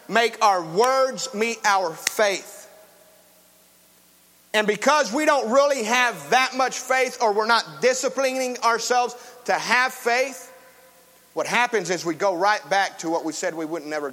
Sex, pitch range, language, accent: male, 175-230 Hz, English, American